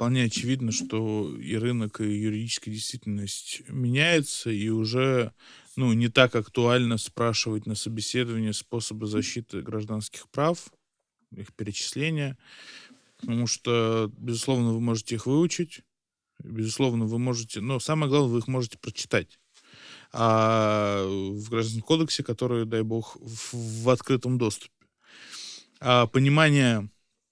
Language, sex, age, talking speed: Russian, male, 20-39, 115 wpm